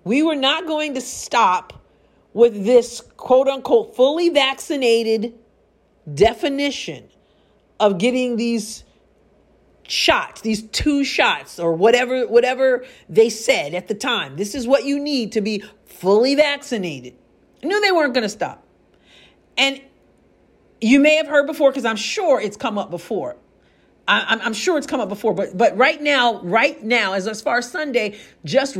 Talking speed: 155 wpm